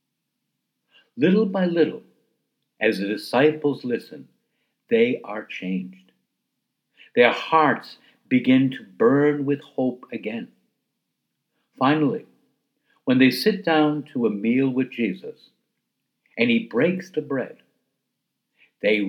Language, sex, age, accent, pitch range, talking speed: English, male, 60-79, American, 130-200 Hz, 105 wpm